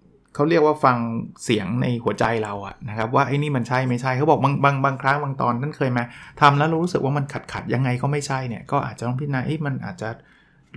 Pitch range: 120-150 Hz